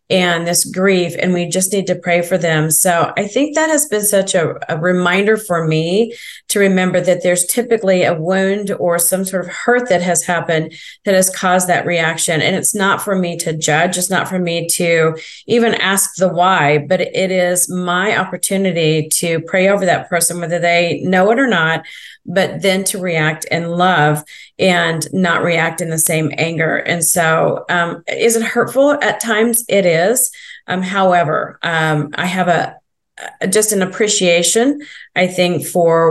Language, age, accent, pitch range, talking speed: English, 40-59, American, 165-190 Hz, 185 wpm